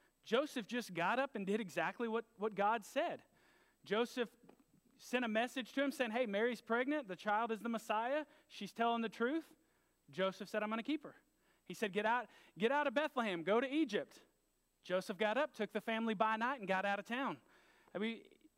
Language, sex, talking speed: English, male, 205 wpm